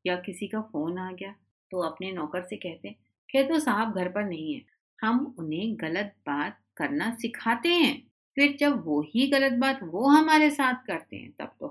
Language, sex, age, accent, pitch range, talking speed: Hindi, female, 50-69, native, 170-270 Hz, 180 wpm